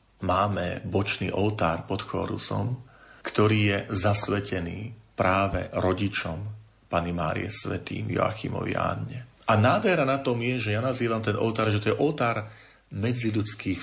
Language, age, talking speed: Slovak, 40-59, 130 wpm